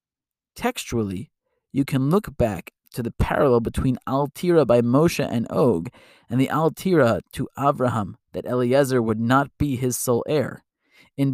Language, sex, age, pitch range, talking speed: English, male, 20-39, 120-140 Hz, 150 wpm